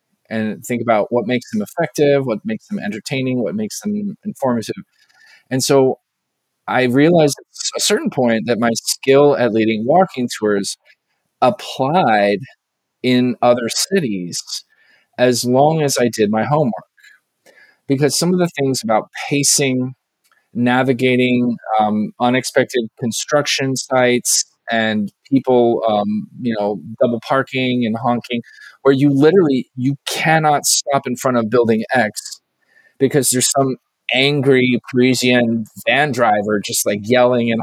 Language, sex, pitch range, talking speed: English, male, 115-140 Hz, 135 wpm